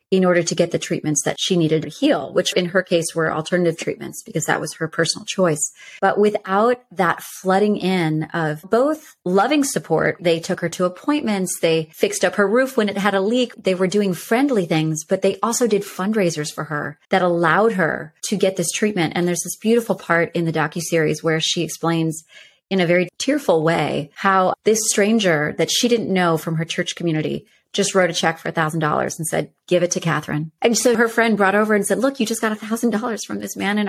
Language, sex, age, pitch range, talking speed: English, female, 30-49, 165-215 Hz, 220 wpm